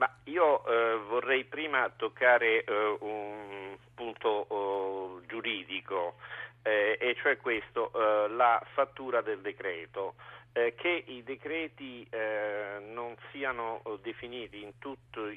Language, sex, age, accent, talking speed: Italian, male, 50-69, native, 115 wpm